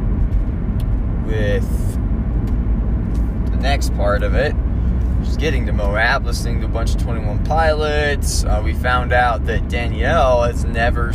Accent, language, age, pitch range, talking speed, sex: American, English, 20-39, 80-100 Hz, 135 wpm, male